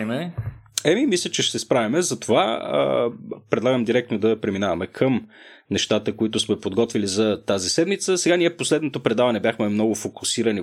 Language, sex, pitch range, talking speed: Bulgarian, male, 110-155 Hz, 150 wpm